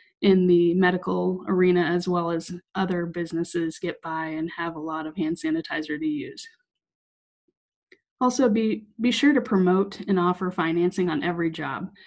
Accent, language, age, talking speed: American, English, 20-39, 160 wpm